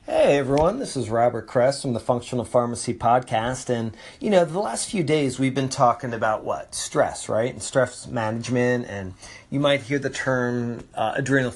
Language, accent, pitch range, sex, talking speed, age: English, American, 110-135 Hz, male, 185 wpm, 40-59